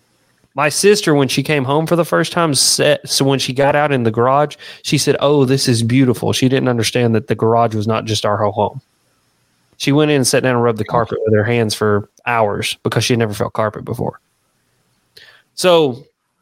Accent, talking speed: American, 220 wpm